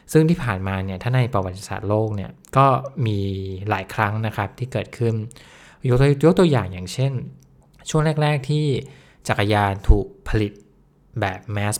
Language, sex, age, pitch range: English, male, 20-39, 100-125 Hz